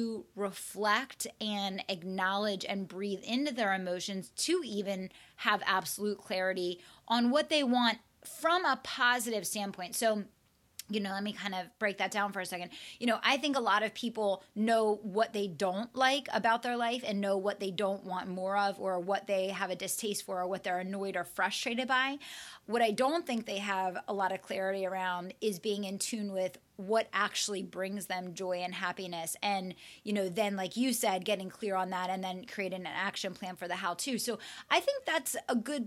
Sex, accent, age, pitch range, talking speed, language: female, American, 20-39, 190-235 Hz, 205 wpm, English